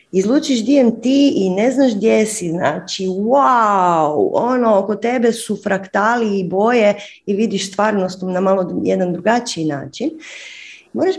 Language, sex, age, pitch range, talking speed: Croatian, female, 30-49, 195-275 Hz, 135 wpm